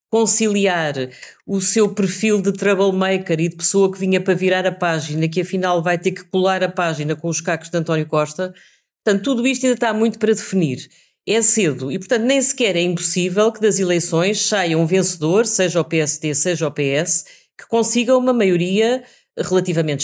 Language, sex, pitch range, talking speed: Portuguese, female, 170-200 Hz, 185 wpm